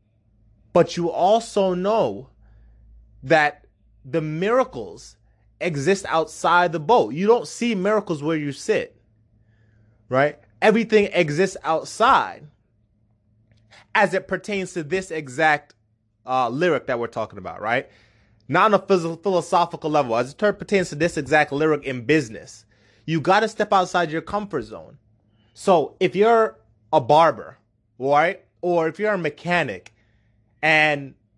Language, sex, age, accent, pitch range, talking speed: English, male, 20-39, American, 110-185 Hz, 130 wpm